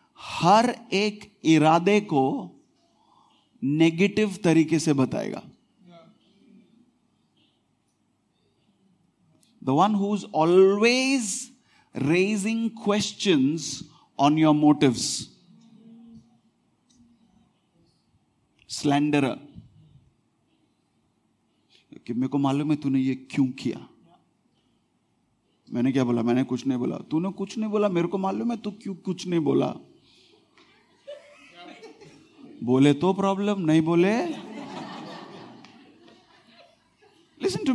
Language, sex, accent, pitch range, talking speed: English, male, Indian, 155-225 Hz, 40 wpm